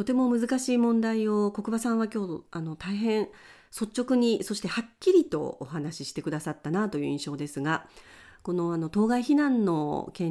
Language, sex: Japanese, female